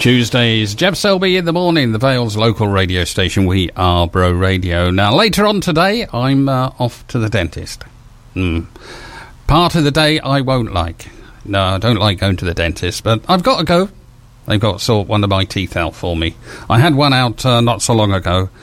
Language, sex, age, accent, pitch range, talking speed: English, male, 50-69, British, 90-125 Hz, 215 wpm